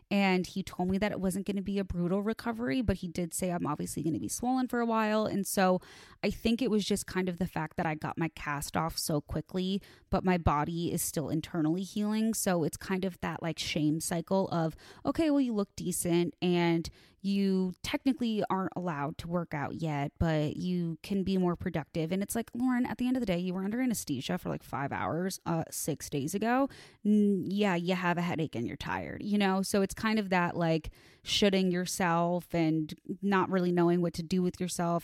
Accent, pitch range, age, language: American, 165-200 Hz, 20-39, English